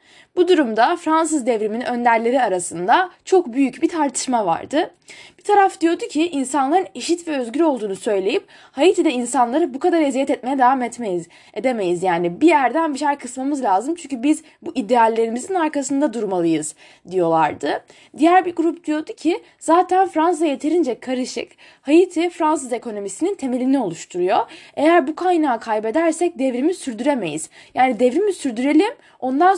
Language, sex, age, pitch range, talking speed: Turkish, female, 10-29, 230-325 Hz, 140 wpm